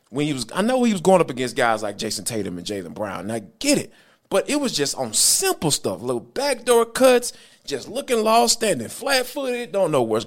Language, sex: English, male